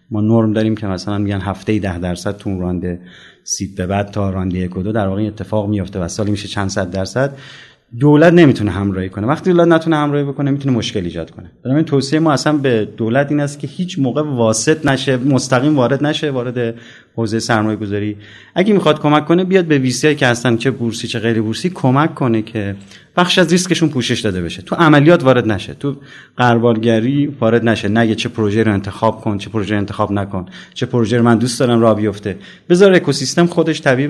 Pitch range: 105-145 Hz